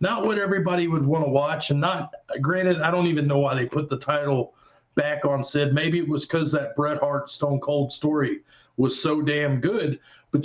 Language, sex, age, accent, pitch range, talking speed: English, male, 40-59, American, 145-175 Hz, 210 wpm